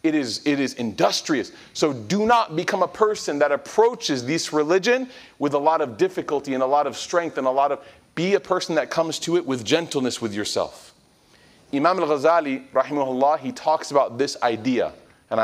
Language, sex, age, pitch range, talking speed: English, male, 40-59, 120-155 Hz, 190 wpm